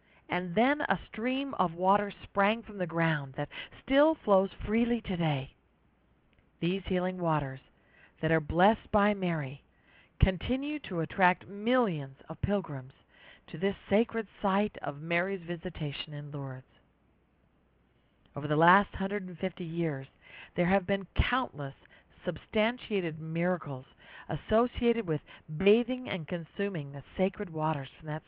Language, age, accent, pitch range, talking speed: English, 50-69, American, 150-200 Hz, 125 wpm